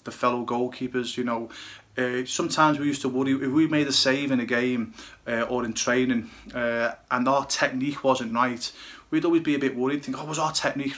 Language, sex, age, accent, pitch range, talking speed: English, male, 30-49, British, 130-150 Hz, 220 wpm